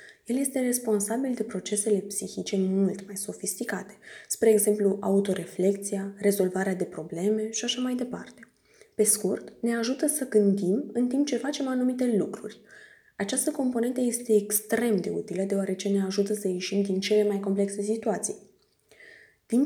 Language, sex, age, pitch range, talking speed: Romanian, female, 20-39, 200-235 Hz, 145 wpm